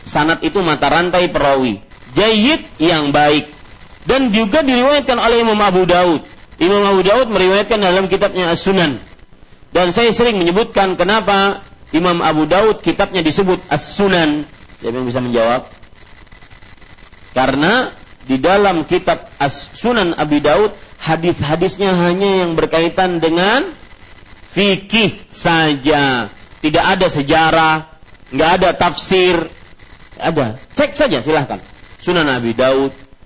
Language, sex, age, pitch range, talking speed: Malay, male, 50-69, 140-220 Hz, 115 wpm